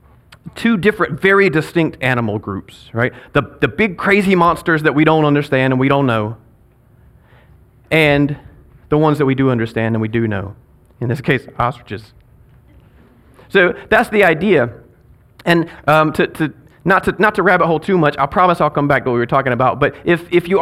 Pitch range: 120-165 Hz